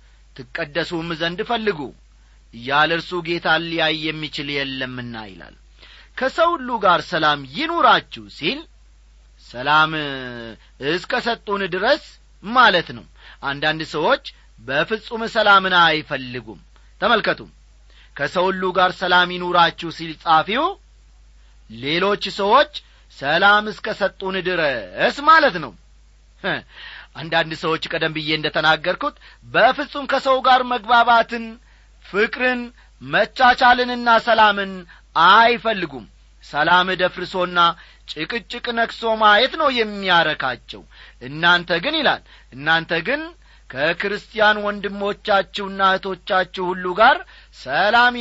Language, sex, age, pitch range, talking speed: Amharic, male, 40-59, 150-225 Hz, 85 wpm